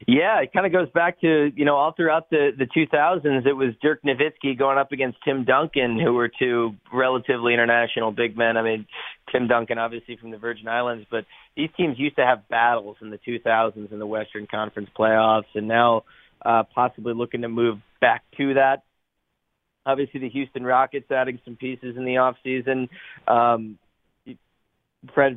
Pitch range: 115-135 Hz